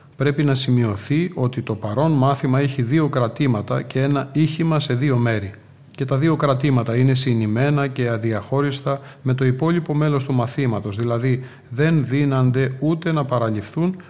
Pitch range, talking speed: 125-145 Hz, 155 wpm